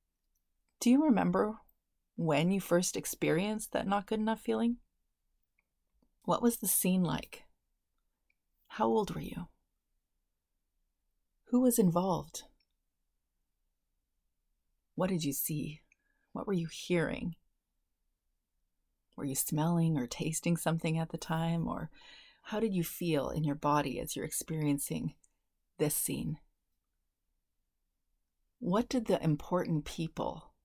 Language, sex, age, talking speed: English, female, 30-49, 115 wpm